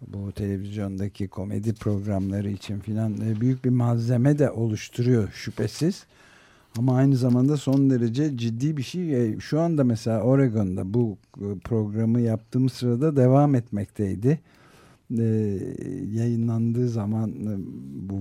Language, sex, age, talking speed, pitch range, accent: Turkish, male, 60-79, 110 wpm, 110-135 Hz, native